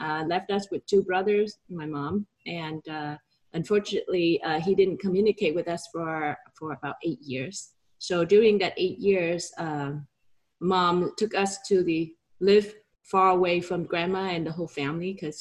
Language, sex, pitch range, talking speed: English, female, 170-205 Hz, 170 wpm